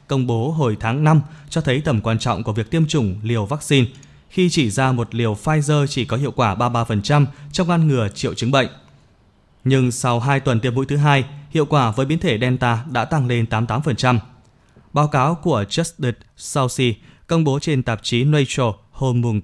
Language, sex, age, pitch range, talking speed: Vietnamese, male, 20-39, 115-145 Hz, 200 wpm